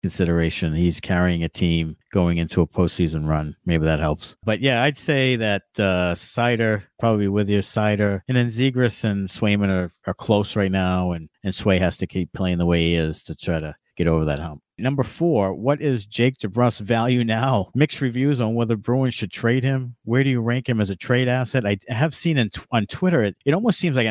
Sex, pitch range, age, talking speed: male, 100-135 Hz, 50-69, 220 wpm